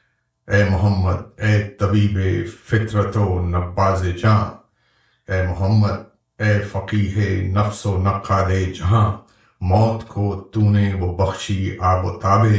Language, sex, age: Urdu, male, 50-69